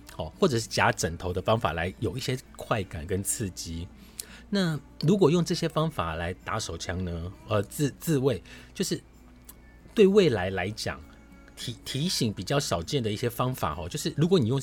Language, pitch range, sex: Chinese, 80-125 Hz, male